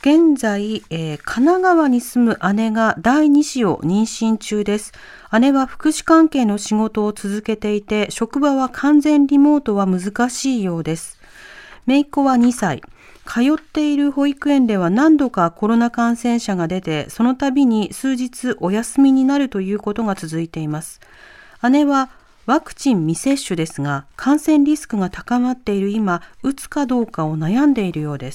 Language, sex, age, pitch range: Japanese, female, 40-59, 205-270 Hz